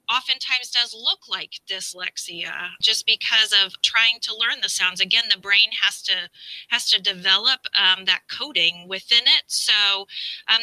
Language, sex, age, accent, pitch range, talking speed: English, female, 30-49, American, 190-225 Hz, 160 wpm